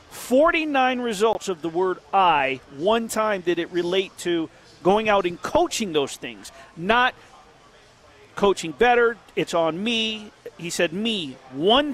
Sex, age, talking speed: male, 40-59, 140 wpm